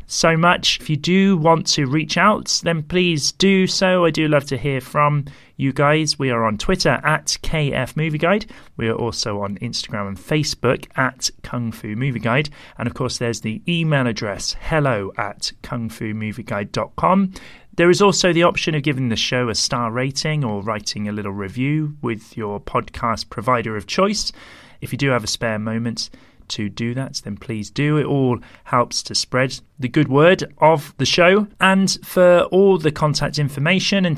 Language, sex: English, male